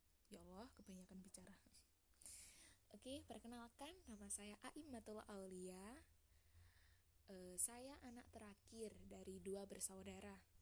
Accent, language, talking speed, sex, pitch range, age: native, Indonesian, 100 wpm, female, 175-225 Hz, 10-29